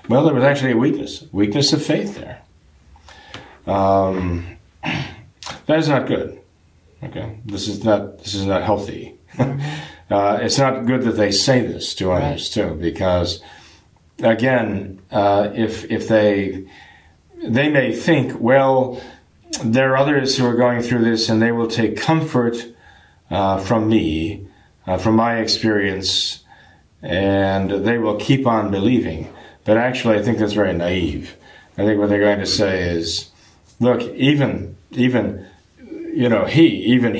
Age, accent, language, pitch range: 50-69, American, English, 100-130 Hz